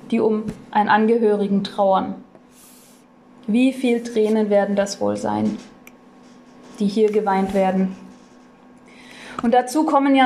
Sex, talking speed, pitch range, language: female, 115 wpm, 215-255 Hz, German